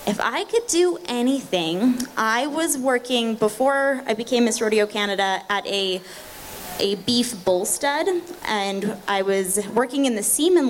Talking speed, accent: 150 wpm, American